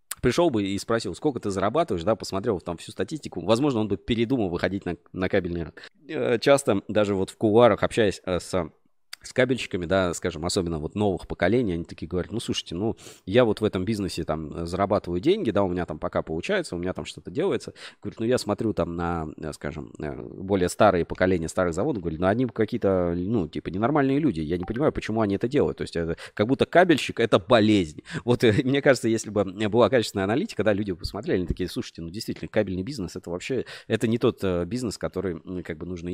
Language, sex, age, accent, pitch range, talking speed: Russian, male, 20-39, native, 85-110 Hz, 210 wpm